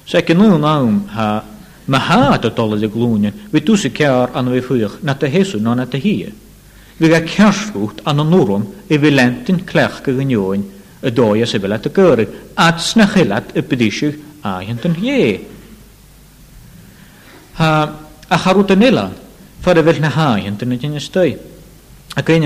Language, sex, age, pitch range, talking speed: English, male, 60-79, 110-160 Hz, 125 wpm